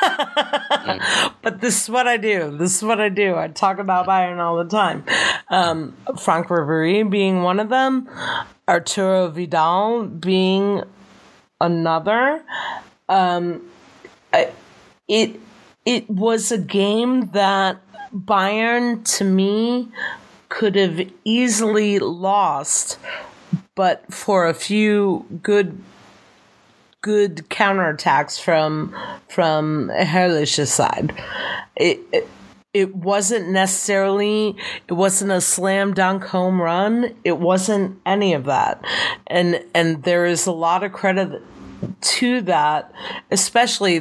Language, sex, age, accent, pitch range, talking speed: English, female, 40-59, American, 175-215 Hz, 115 wpm